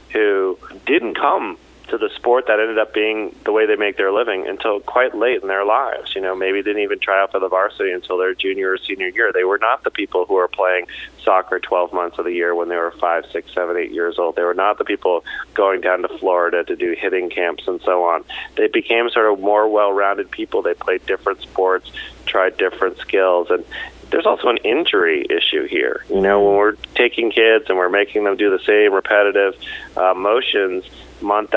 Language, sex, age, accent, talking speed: English, male, 30-49, American, 220 wpm